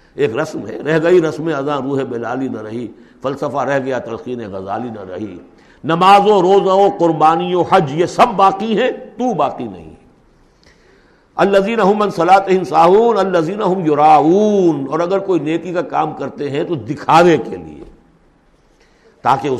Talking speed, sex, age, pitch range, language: 145 wpm, male, 60-79, 130-185 Hz, Urdu